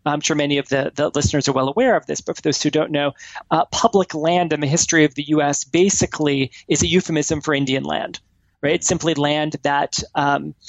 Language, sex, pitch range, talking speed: English, male, 145-170 Hz, 225 wpm